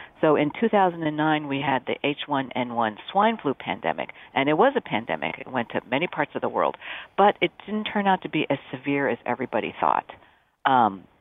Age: 50-69